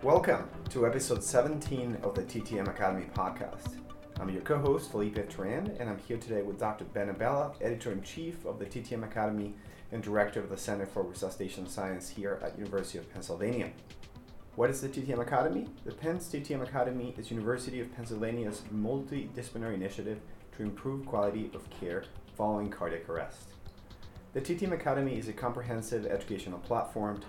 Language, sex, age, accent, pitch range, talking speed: English, male, 30-49, American, 100-120 Hz, 160 wpm